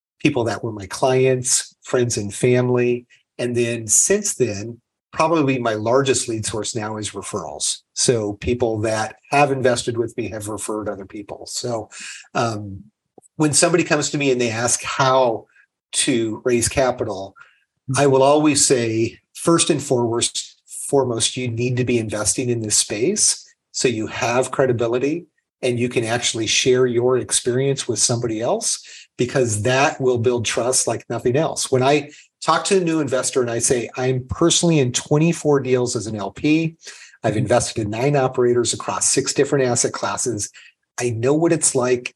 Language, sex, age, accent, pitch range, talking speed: English, male, 40-59, American, 115-135 Hz, 165 wpm